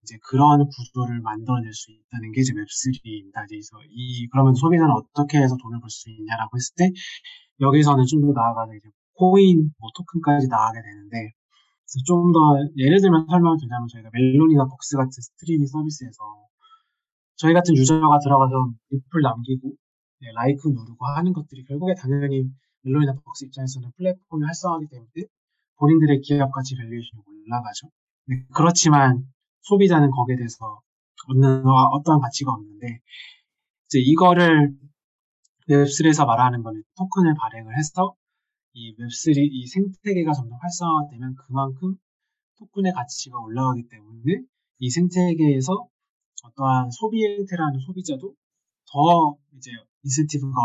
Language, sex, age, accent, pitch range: Korean, male, 20-39, native, 120-160 Hz